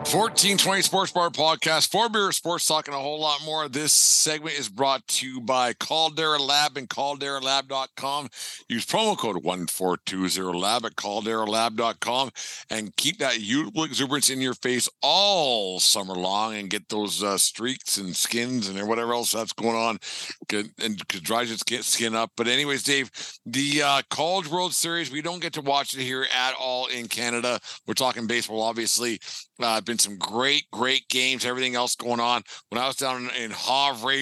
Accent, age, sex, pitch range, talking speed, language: American, 50-69, male, 115-135 Hz, 180 wpm, English